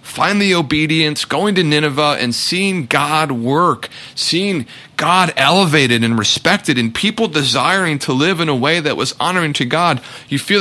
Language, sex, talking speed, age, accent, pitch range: English, male, 170 wpm, 30-49, American, 115-155 Hz